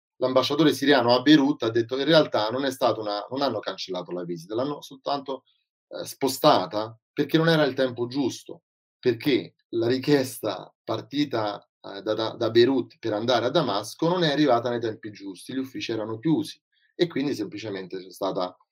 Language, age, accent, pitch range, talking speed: Italian, 30-49, native, 105-135 Hz, 180 wpm